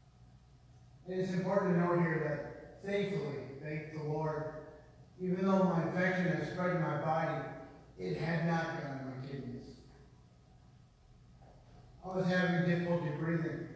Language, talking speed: English, 130 wpm